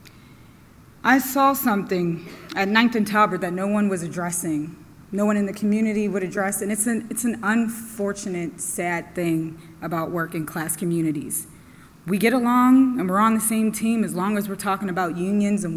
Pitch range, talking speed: 175-210 Hz, 185 wpm